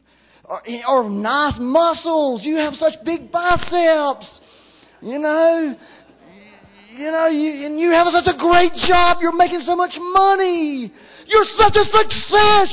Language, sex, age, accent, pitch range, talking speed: English, male, 40-59, American, 240-330 Hz, 140 wpm